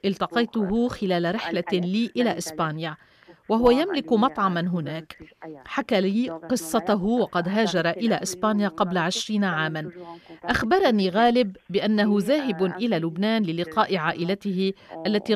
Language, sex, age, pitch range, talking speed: Arabic, female, 40-59, 180-235 Hz, 115 wpm